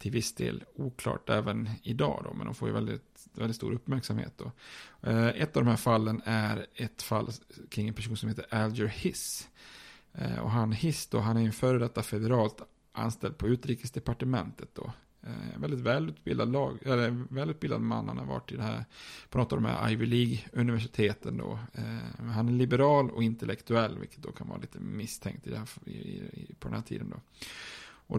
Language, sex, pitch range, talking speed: Swedish, male, 110-130 Hz, 195 wpm